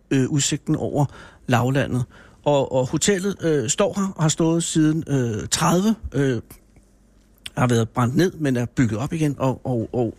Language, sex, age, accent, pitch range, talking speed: Danish, male, 60-79, native, 120-155 Hz, 175 wpm